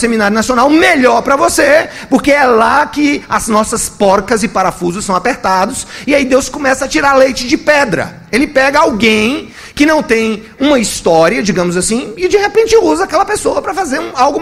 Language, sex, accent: Portuguese, male, Brazilian